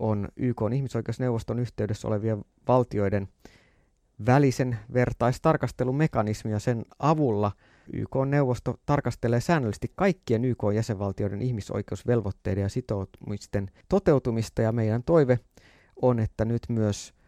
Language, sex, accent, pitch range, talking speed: Finnish, male, native, 105-135 Hz, 90 wpm